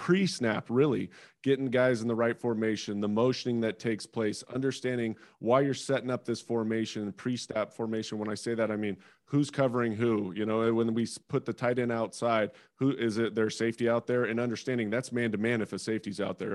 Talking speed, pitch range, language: 220 wpm, 110-125 Hz, English